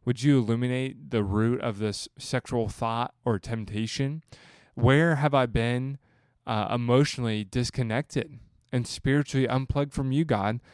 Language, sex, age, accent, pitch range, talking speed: English, male, 20-39, American, 110-125 Hz, 135 wpm